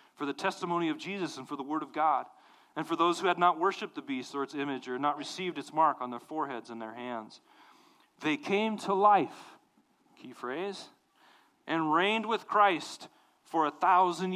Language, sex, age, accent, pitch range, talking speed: English, male, 40-59, American, 160-210 Hz, 195 wpm